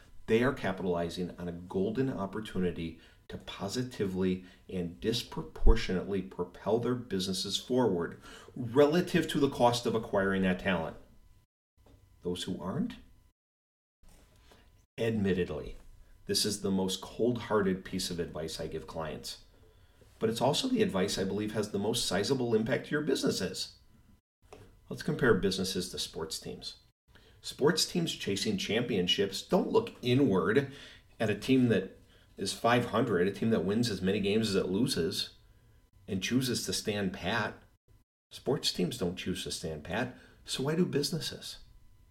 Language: English